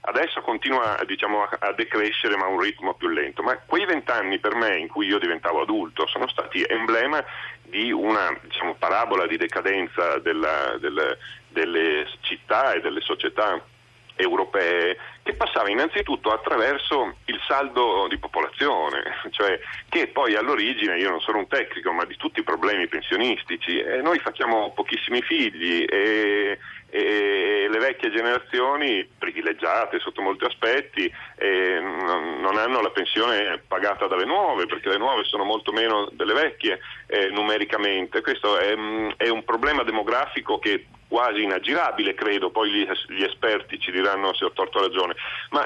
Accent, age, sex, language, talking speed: native, 40-59, male, Italian, 150 wpm